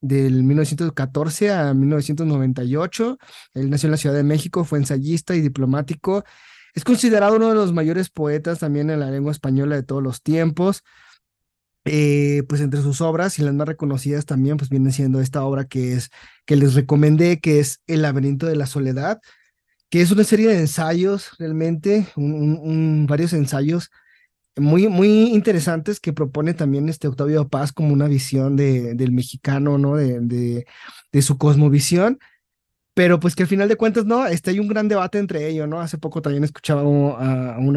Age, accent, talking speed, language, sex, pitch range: 30-49, Mexican, 185 wpm, Spanish, male, 140-175 Hz